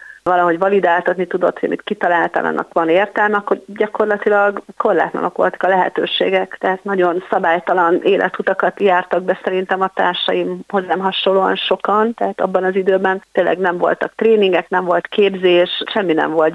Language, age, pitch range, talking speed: Hungarian, 30-49, 180-195 Hz, 145 wpm